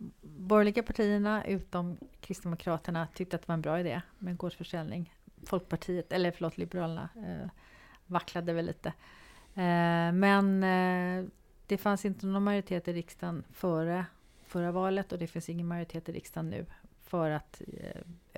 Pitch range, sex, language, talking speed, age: 165-185 Hz, female, Swedish, 145 wpm, 40-59